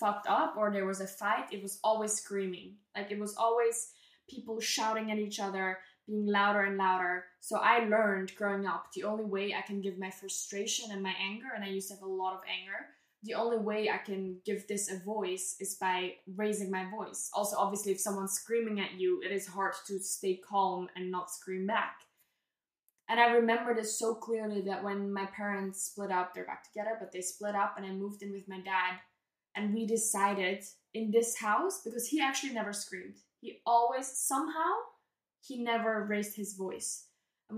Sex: female